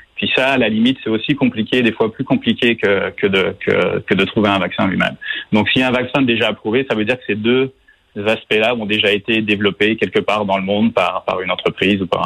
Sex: male